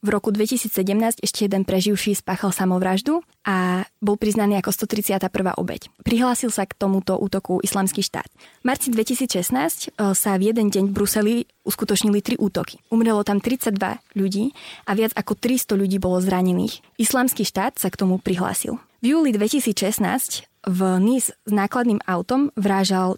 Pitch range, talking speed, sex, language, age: 195-225 Hz, 155 wpm, female, Slovak, 20-39